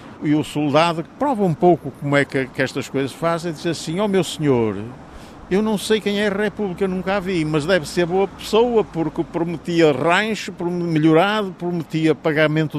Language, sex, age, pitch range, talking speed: Portuguese, male, 50-69, 130-170 Hz, 190 wpm